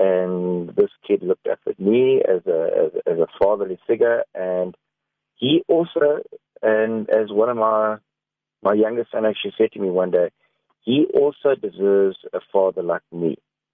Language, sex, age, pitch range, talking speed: English, male, 50-69, 95-145 Hz, 155 wpm